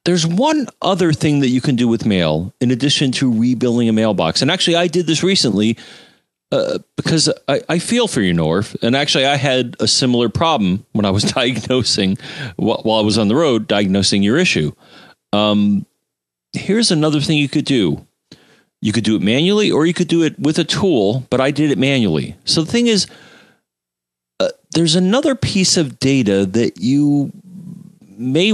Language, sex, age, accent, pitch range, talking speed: English, male, 40-59, American, 105-165 Hz, 185 wpm